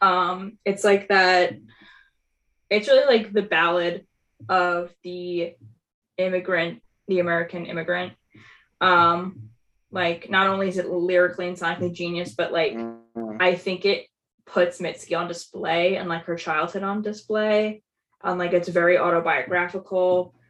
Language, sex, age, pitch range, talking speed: English, female, 10-29, 170-195 Hz, 130 wpm